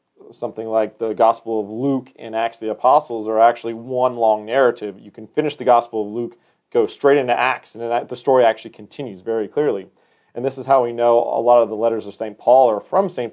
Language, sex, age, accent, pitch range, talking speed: English, male, 40-59, American, 110-150 Hz, 235 wpm